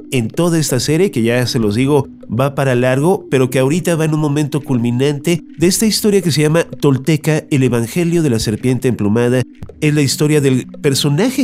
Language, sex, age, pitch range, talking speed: Spanish, male, 40-59, 125-155 Hz, 200 wpm